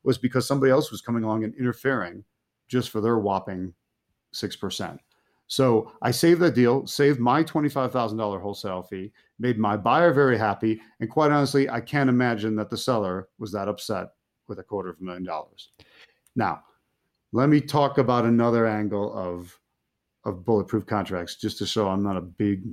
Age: 40-59